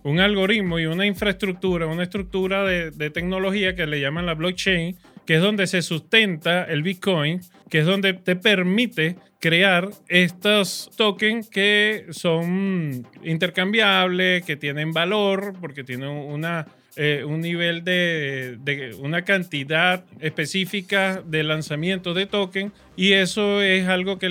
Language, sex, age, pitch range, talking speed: Spanish, male, 30-49, 155-190 Hz, 140 wpm